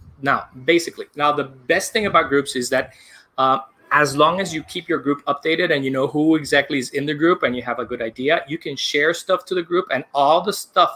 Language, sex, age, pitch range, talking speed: English, male, 30-49, 130-165 Hz, 245 wpm